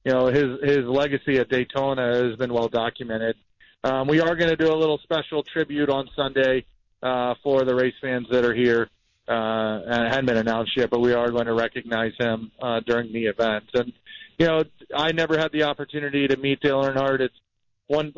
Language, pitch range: English, 125-150 Hz